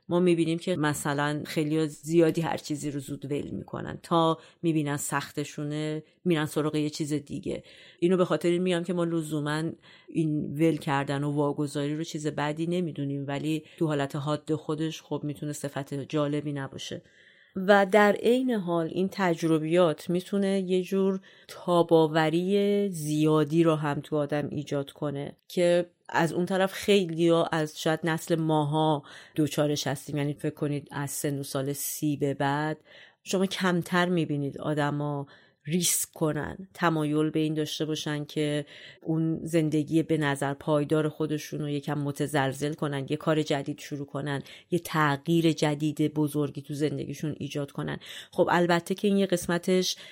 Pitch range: 145-170 Hz